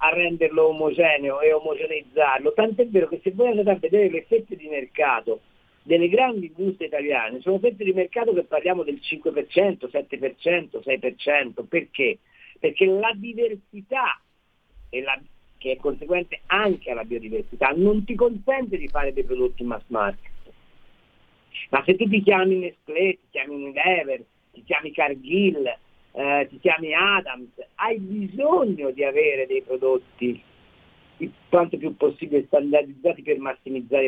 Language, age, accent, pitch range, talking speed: Italian, 50-69, native, 155-250 Hz, 135 wpm